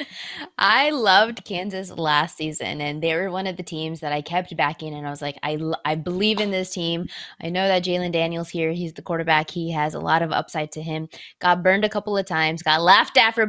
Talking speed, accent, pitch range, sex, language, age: 235 wpm, American, 160-205 Hz, female, English, 20-39